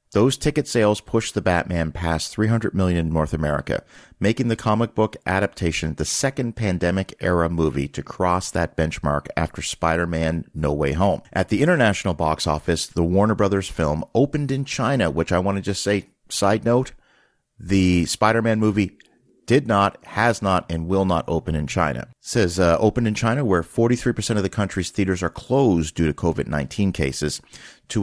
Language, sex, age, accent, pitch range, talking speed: English, male, 40-59, American, 85-115 Hz, 170 wpm